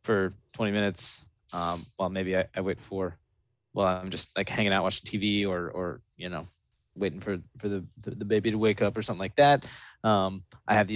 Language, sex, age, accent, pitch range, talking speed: English, male, 20-39, American, 95-115 Hz, 225 wpm